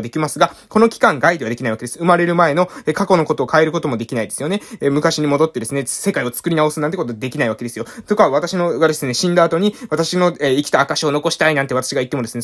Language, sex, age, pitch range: Japanese, male, 20-39, 140-220 Hz